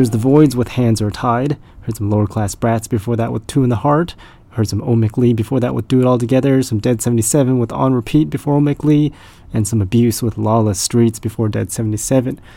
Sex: male